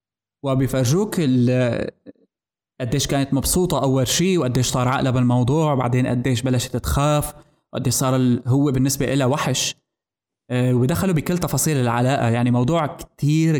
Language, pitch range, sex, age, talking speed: Arabic, 125-155 Hz, male, 20-39, 130 wpm